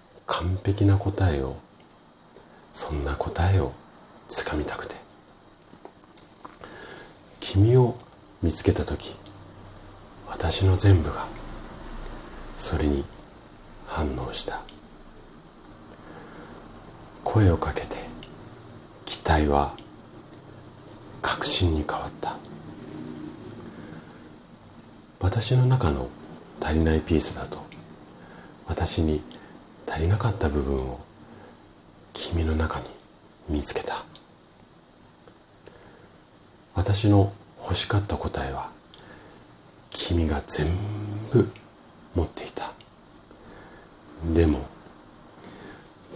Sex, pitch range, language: male, 75-100 Hz, Japanese